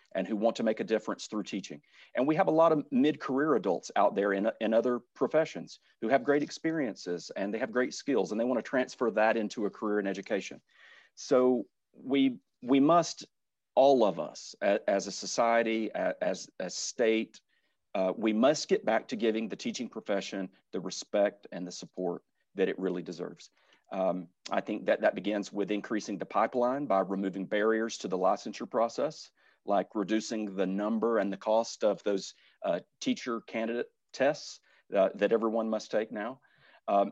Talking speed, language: 180 wpm, English